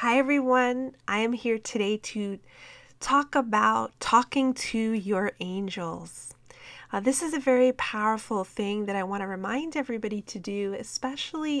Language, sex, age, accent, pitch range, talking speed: English, female, 30-49, American, 195-250 Hz, 150 wpm